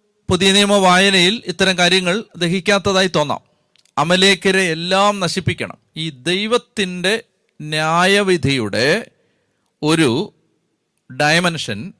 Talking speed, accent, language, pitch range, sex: 75 wpm, native, Malayalam, 165-195 Hz, male